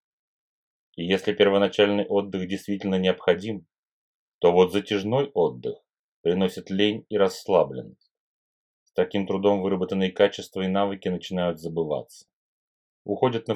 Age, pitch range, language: 30-49, 90-105 Hz, Russian